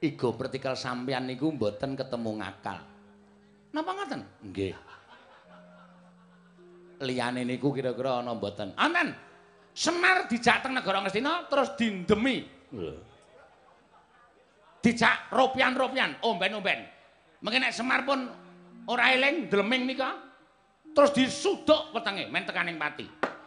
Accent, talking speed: native, 95 wpm